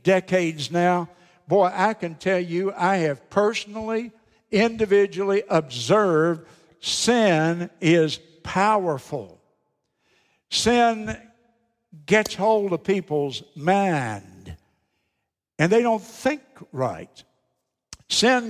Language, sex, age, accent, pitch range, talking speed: English, male, 60-79, American, 165-215 Hz, 90 wpm